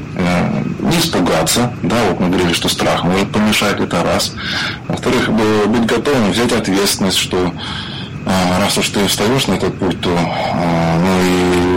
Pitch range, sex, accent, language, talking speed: 90-110 Hz, male, native, Russian, 140 wpm